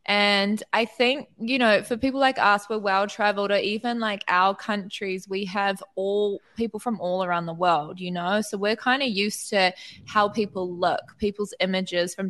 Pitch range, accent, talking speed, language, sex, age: 180-215 Hz, Australian, 190 wpm, English, female, 20-39